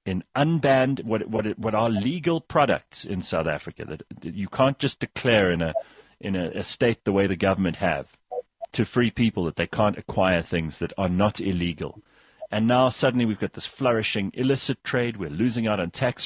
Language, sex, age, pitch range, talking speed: English, male, 40-59, 95-120 Hz, 195 wpm